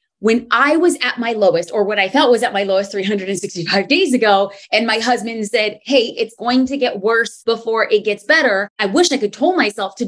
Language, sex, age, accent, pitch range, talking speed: English, female, 20-39, American, 205-270 Hz, 225 wpm